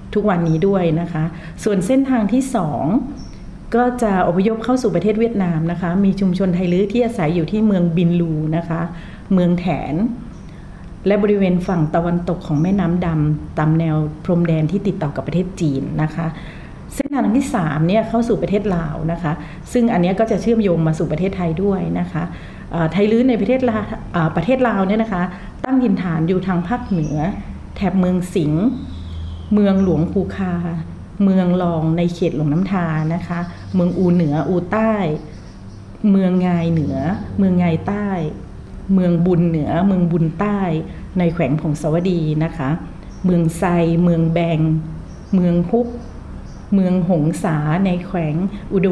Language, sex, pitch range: Thai, female, 160-195 Hz